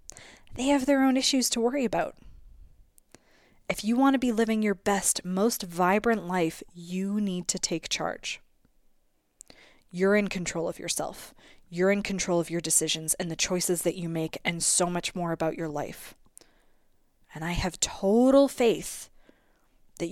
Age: 20-39